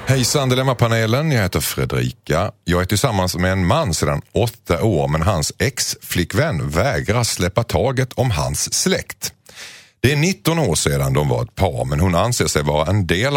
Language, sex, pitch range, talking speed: Swedish, male, 90-130 Hz, 175 wpm